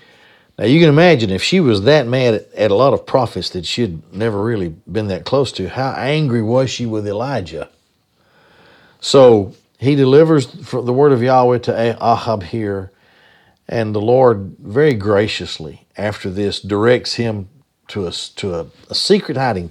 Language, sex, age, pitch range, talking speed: English, male, 50-69, 100-130 Hz, 160 wpm